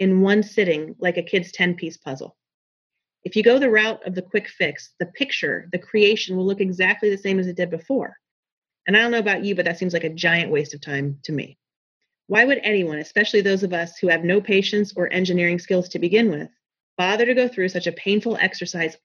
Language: English